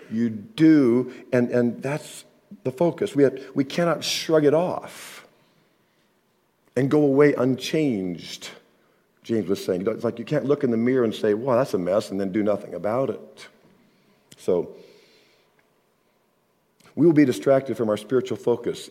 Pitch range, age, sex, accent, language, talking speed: 105-145 Hz, 50-69, male, American, English, 165 wpm